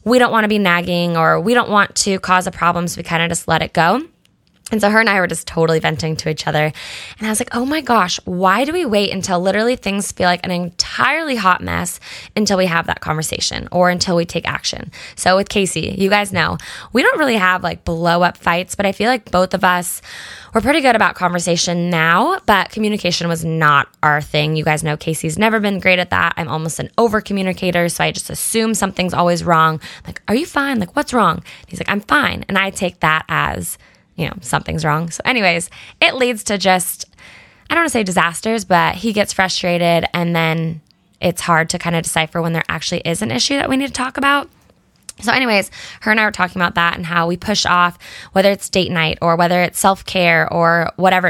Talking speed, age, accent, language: 230 wpm, 10-29, American, English